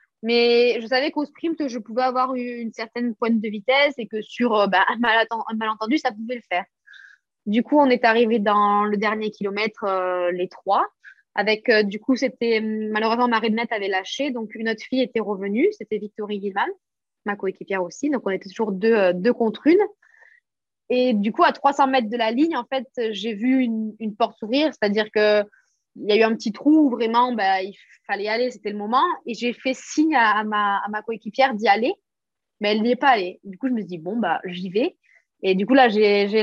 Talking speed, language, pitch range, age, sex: 225 wpm, French, 210-255 Hz, 20-39, female